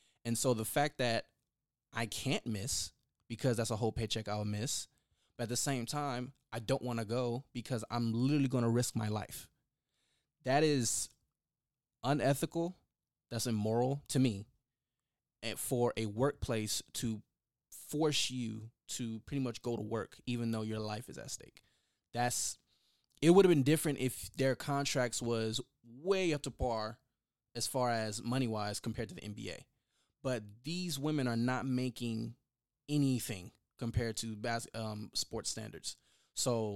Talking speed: 155 wpm